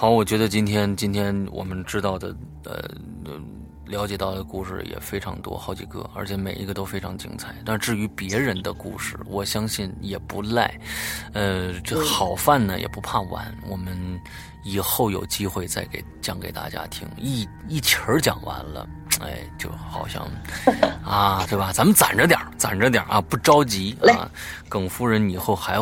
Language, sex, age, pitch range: Chinese, male, 20-39, 95-110 Hz